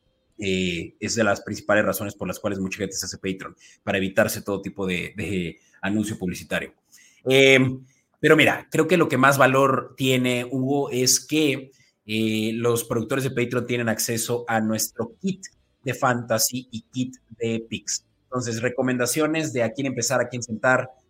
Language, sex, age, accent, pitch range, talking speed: Spanish, male, 30-49, Mexican, 105-130 Hz, 170 wpm